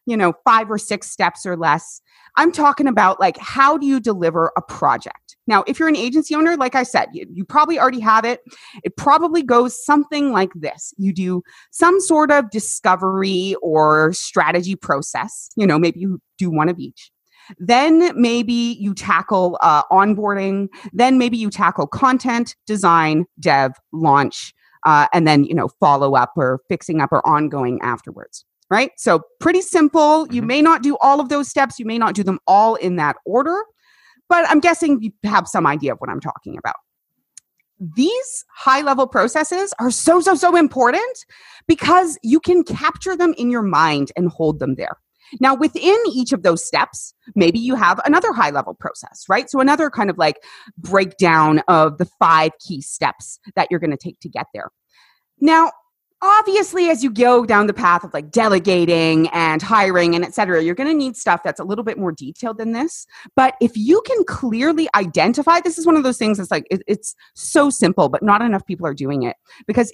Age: 30-49